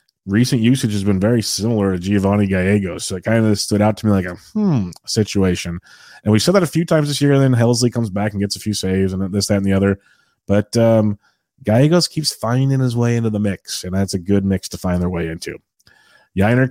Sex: male